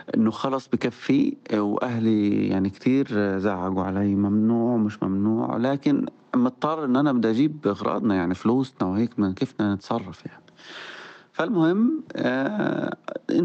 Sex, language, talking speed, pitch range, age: male, Arabic, 120 wpm, 110-145 Hz, 30-49